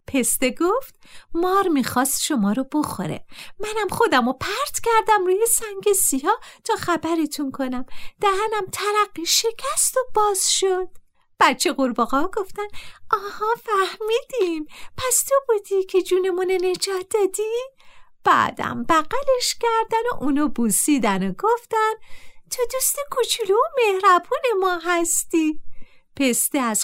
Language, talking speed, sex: Persian, 120 wpm, female